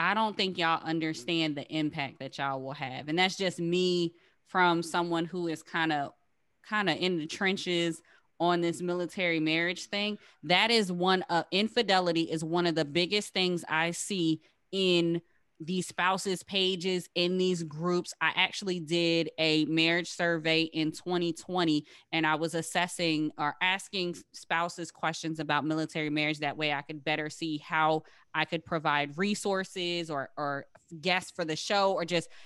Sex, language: female, English